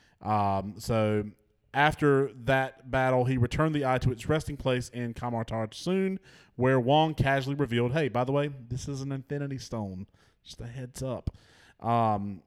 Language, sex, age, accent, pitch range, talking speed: English, male, 30-49, American, 115-145 Hz, 165 wpm